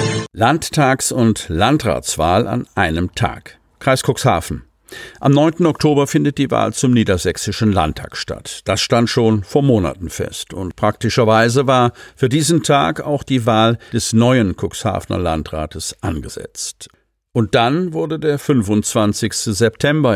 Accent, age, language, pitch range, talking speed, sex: German, 50-69, German, 100-130 Hz, 130 wpm, male